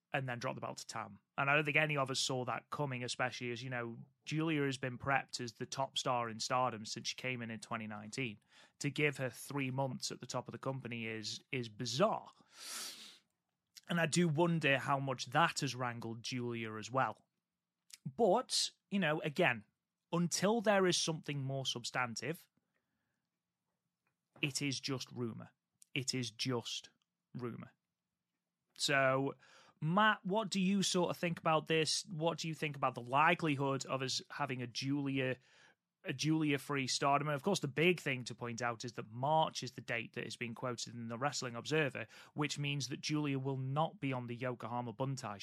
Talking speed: 185 wpm